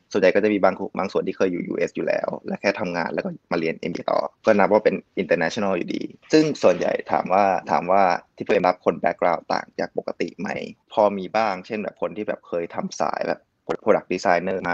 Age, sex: 20-39, male